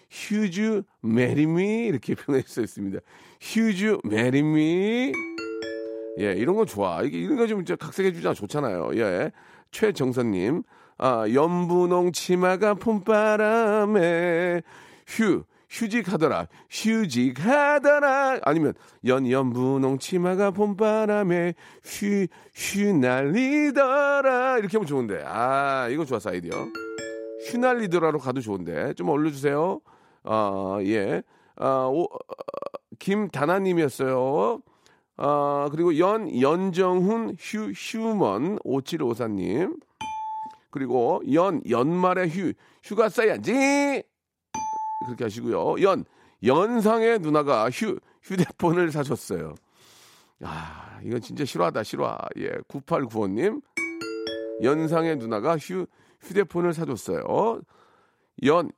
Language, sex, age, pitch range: Korean, male, 40-59, 135-225 Hz